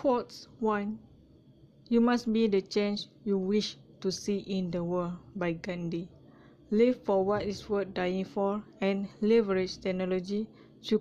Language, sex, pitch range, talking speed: English, female, 165-210 Hz, 145 wpm